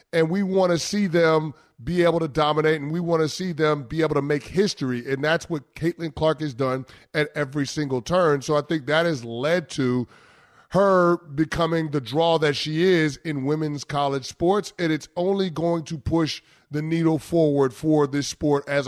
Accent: American